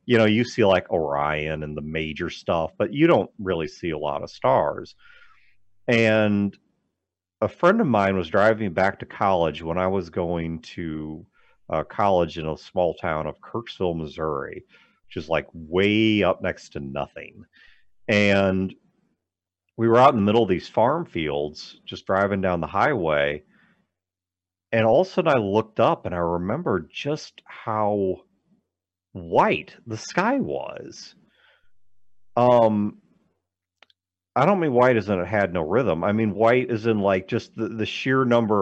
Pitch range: 90-125 Hz